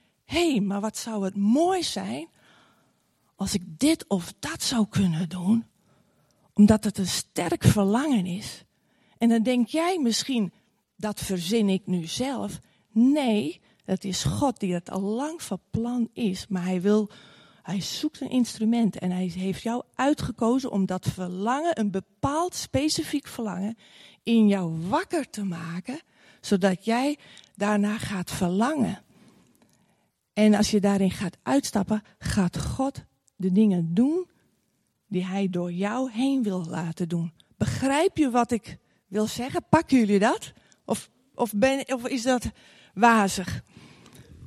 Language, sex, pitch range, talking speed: Dutch, female, 190-255 Hz, 140 wpm